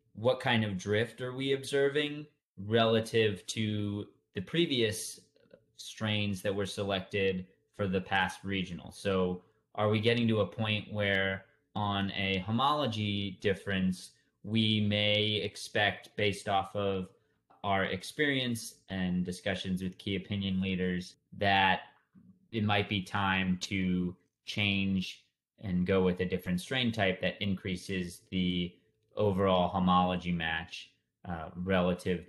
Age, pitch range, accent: 30-49, 90-105 Hz, American